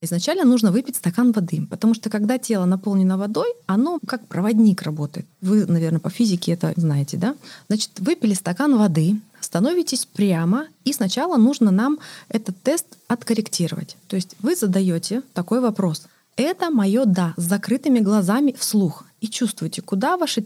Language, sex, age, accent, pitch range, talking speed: Russian, female, 20-39, native, 180-235 Hz, 155 wpm